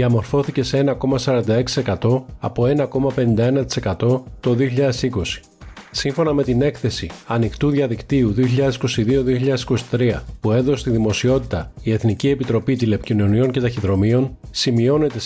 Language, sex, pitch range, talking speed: Greek, male, 115-135 Hz, 100 wpm